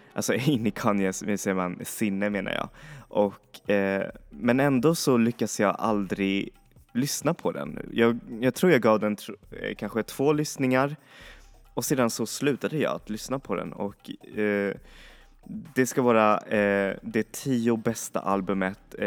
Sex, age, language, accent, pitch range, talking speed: male, 20-39, Swedish, native, 95-110 Hz, 140 wpm